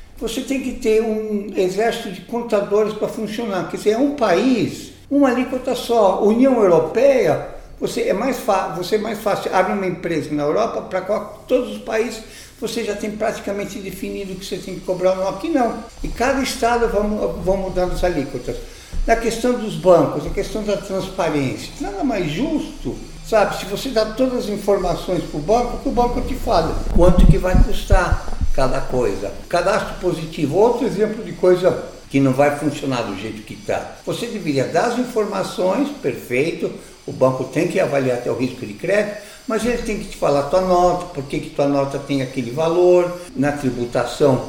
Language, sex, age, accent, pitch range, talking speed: Portuguese, male, 60-79, Brazilian, 155-220 Hz, 180 wpm